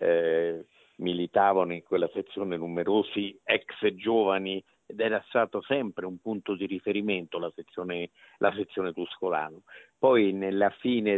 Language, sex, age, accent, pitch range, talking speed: Italian, male, 50-69, native, 90-110 Hz, 130 wpm